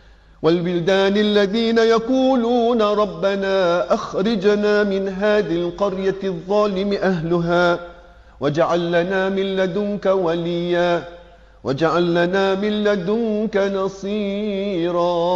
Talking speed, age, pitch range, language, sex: 80 wpm, 40-59, 175-220 Hz, English, male